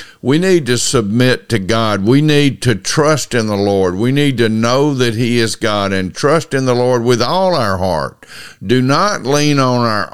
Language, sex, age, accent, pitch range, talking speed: English, male, 50-69, American, 100-125 Hz, 205 wpm